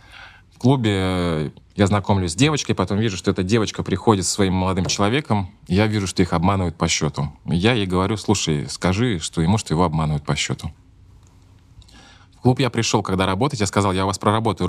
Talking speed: 190 wpm